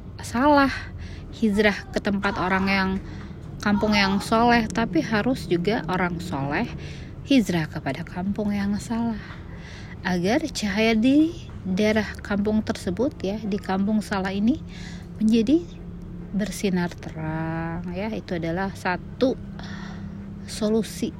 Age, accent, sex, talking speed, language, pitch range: 20-39, native, female, 110 wpm, Indonesian, 155-195 Hz